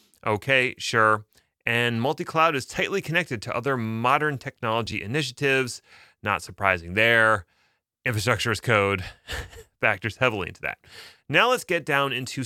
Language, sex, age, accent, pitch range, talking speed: English, male, 30-49, American, 105-140 Hz, 130 wpm